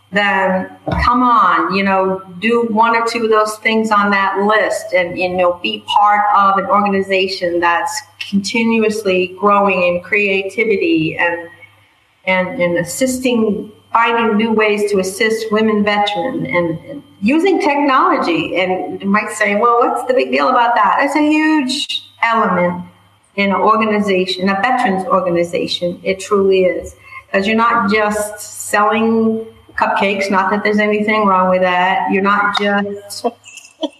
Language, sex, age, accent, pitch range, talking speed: English, female, 50-69, American, 190-225 Hz, 145 wpm